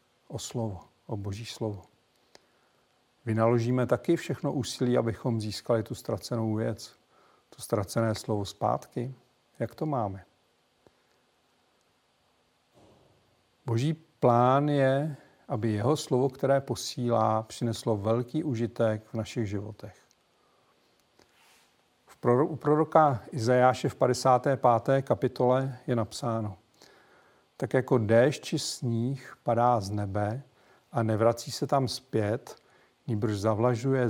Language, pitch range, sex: Czech, 110-130 Hz, male